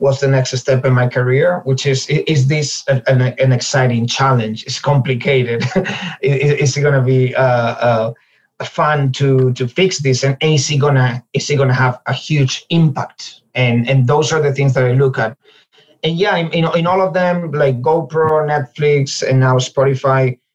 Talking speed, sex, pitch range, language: 185 wpm, male, 130-155 Hz, English